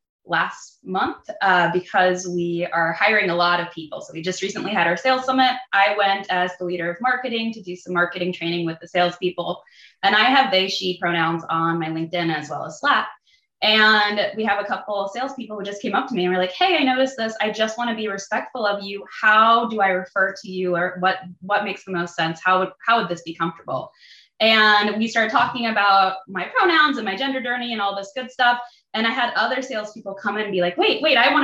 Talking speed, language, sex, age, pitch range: 240 wpm, English, female, 20-39, 180-230 Hz